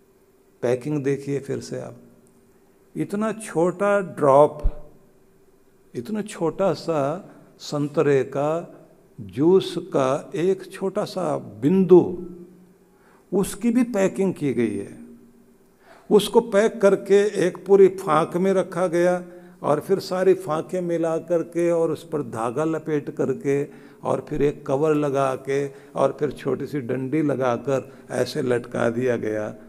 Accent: native